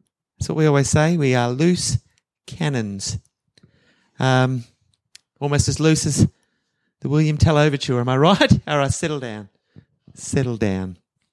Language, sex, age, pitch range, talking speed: English, male, 30-49, 120-160 Hz, 145 wpm